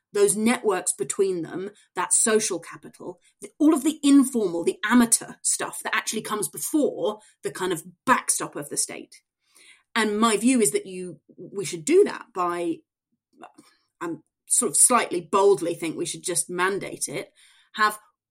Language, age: English, 30-49